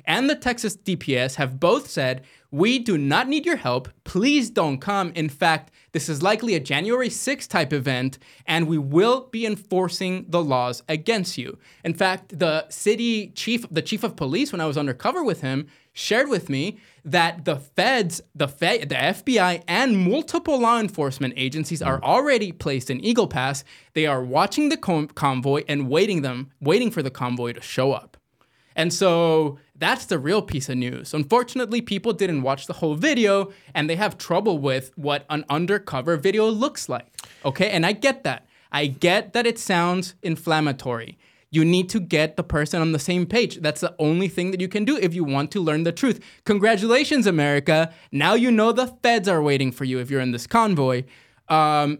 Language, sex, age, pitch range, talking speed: English, male, 20-39, 145-210 Hz, 190 wpm